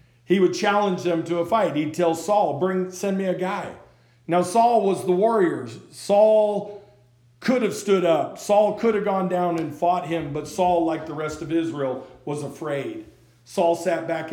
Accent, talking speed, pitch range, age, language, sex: American, 185 wpm, 140-185 Hz, 50-69, English, male